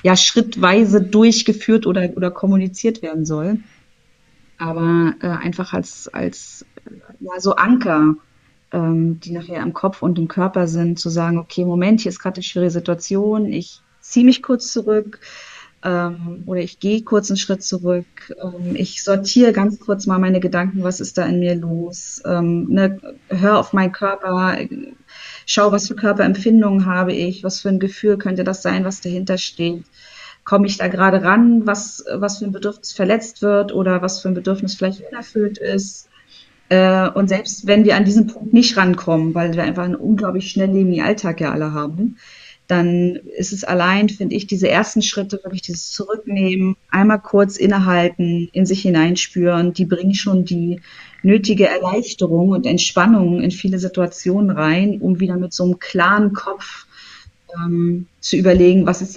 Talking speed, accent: 165 wpm, German